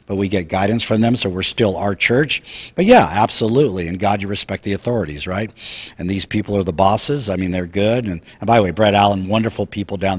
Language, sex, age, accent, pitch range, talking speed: English, male, 50-69, American, 95-110 Hz, 240 wpm